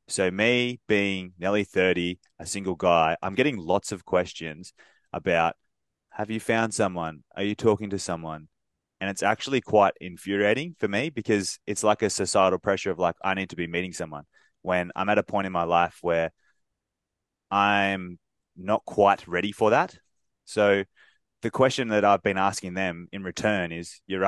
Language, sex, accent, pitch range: English, male, Australian, 90-110 Hz